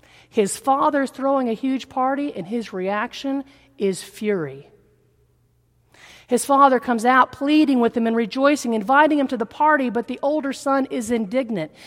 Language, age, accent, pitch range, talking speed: English, 40-59, American, 215-305 Hz, 155 wpm